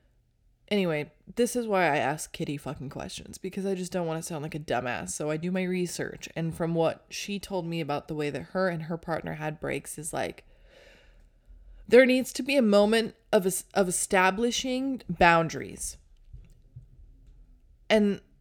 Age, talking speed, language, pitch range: 20-39, 175 wpm, English, 150-190 Hz